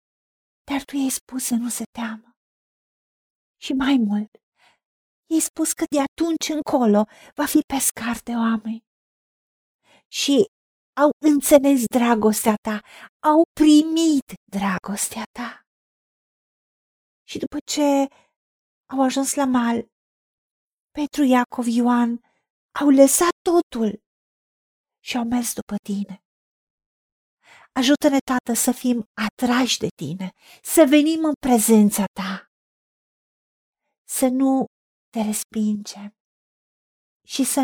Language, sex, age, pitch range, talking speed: Romanian, female, 40-59, 220-275 Hz, 105 wpm